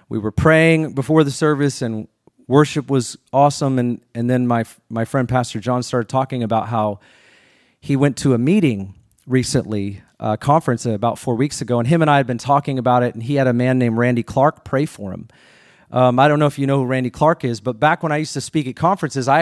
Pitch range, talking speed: 115-145 Hz, 230 wpm